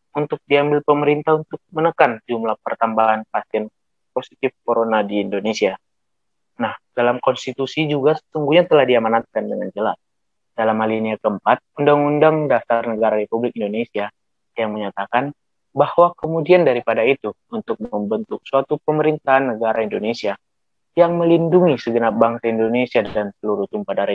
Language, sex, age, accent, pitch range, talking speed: Indonesian, male, 20-39, native, 110-150 Hz, 120 wpm